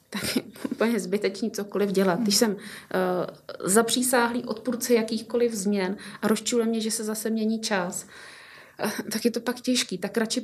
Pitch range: 195-235 Hz